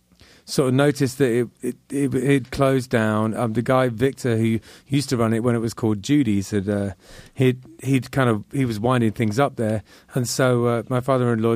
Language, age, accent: English, 30-49, British